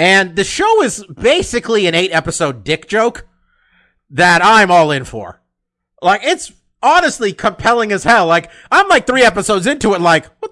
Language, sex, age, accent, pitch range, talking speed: English, male, 30-49, American, 135-190 Hz, 165 wpm